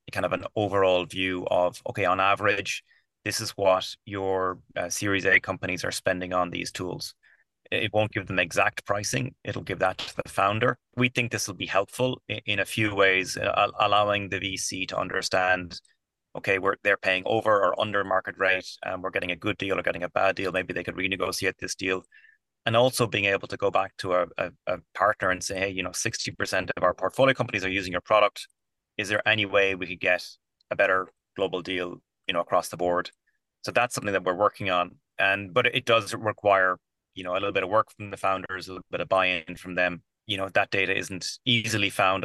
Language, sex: English, male